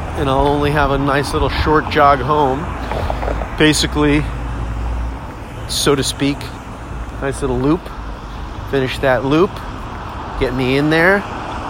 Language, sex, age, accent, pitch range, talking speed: English, male, 40-59, American, 120-150 Hz, 125 wpm